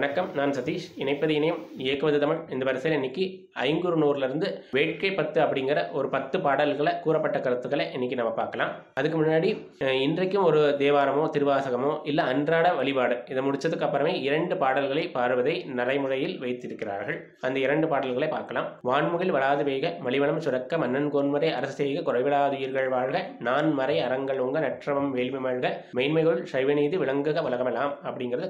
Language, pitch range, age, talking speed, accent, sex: Tamil, 130-155 Hz, 20-39, 130 wpm, native, male